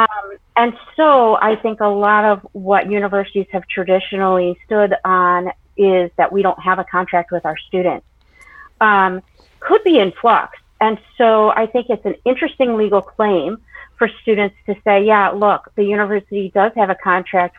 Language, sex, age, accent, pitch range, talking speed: English, female, 40-59, American, 180-220 Hz, 170 wpm